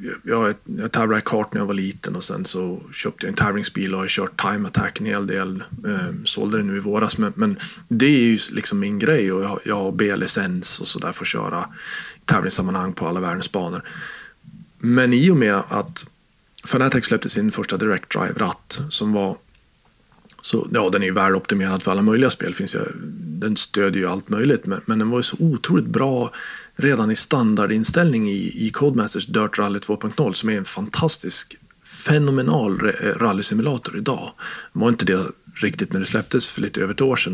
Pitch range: 100-170 Hz